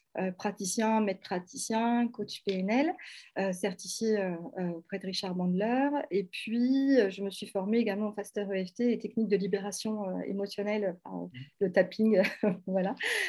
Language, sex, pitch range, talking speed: French, female, 190-235 Hz, 155 wpm